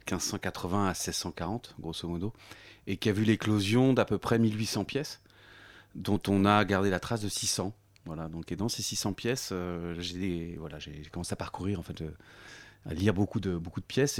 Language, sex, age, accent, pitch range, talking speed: French, male, 30-49, French, 90-110 Hz, 200 wpm